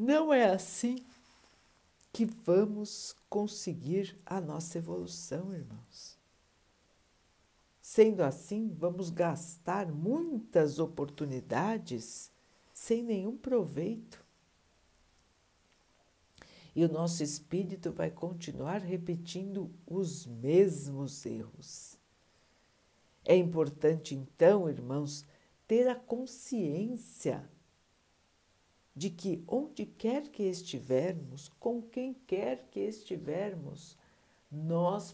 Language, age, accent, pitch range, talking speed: Portuguese, 60-79, Brazilian, 135-195 Hz, 80 wpm